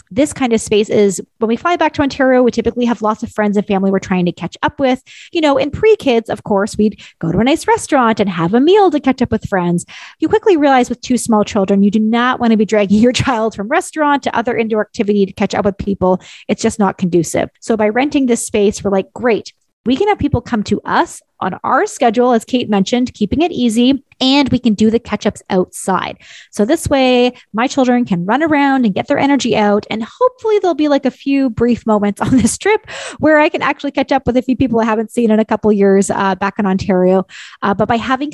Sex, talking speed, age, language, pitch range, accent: female, 250 wpm, 30-49, English, 205-270 Hz, American